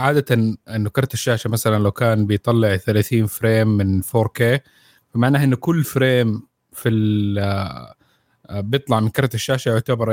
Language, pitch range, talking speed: Arabic, 115-145 Hz, 130 wpm